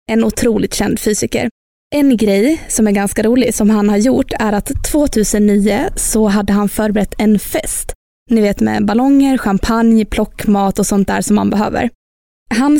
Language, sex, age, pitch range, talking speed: Swedish, female, 20-39, 205-235 Hz, 170 wpm